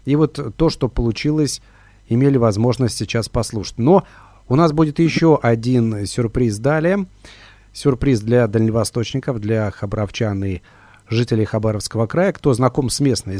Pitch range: 105-140 Hz